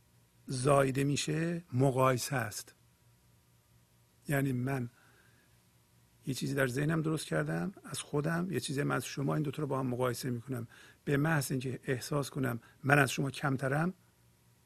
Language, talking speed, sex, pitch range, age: Persian, 145 wpm, male, 115-145 Hz, 50-69